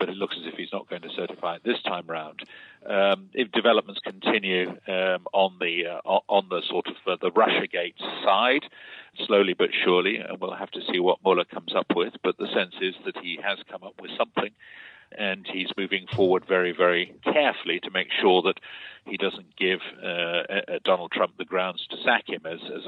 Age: 50-69